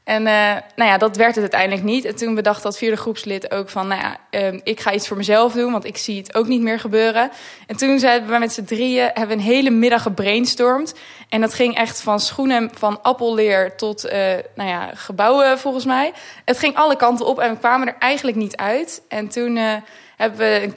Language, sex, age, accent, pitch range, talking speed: Dutch, female, 20-39, Dutch, 210-255 Hz, 230 wpm